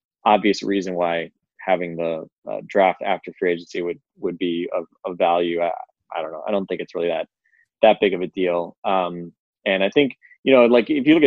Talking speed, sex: 220 wpm, male